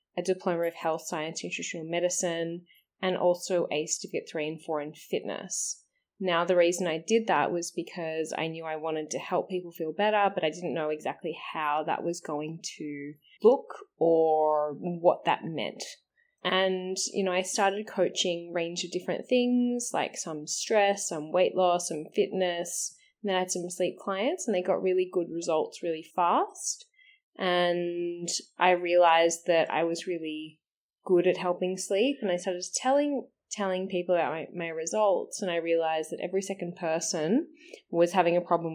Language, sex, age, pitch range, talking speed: Slovak, female, 20-39, 165-195 Hz, 175 wpm